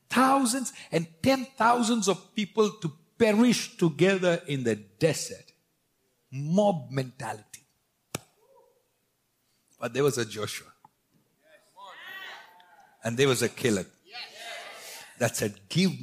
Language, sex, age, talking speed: English, male, 60-79, 100 wpm